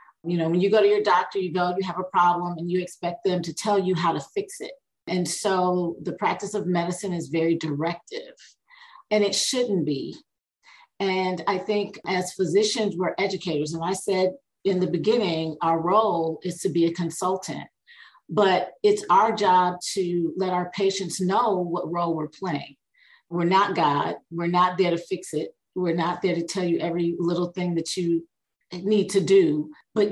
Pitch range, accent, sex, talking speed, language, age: 170-200 Hz, American, female, 190 wpm, English, 40-59